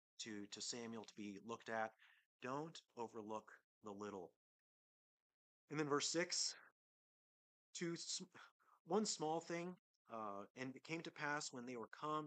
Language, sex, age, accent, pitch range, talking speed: English, male, 30-49, American, 110-145 Hz, 145 wpm